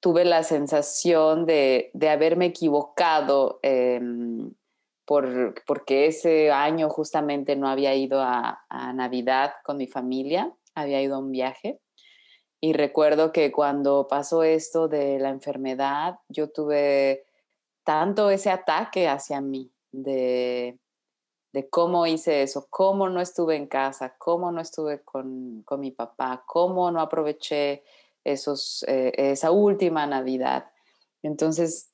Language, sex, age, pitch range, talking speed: Spanish, female, 30-49, 140-180 Hz, 130 wpm